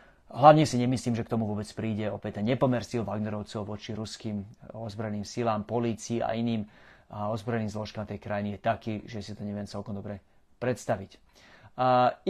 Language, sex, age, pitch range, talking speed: Slovak, male, 30-49, 110-130 Hz, 155 wpm